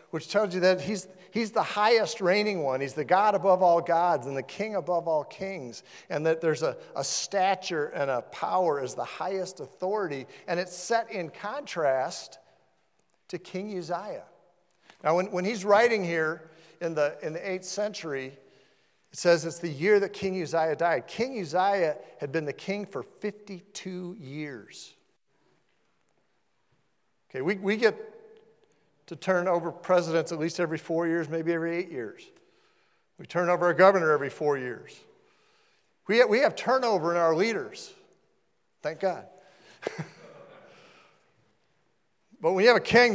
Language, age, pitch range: English, 50-69, 160-210 Hz